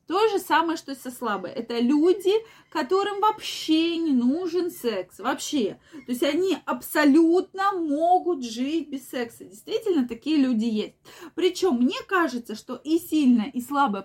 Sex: female